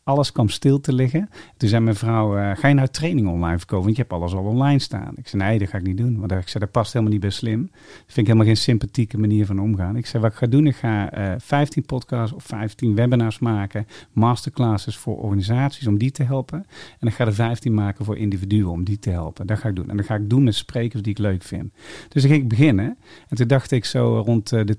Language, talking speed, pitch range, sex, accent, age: Dutch, 270 wpm, 105-135 Hz, male, Dutch, 40-59